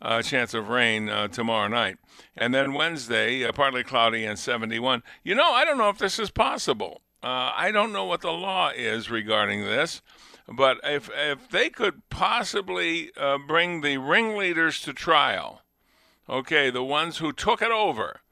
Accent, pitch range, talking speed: American, 125-175 Hz, 175 wpm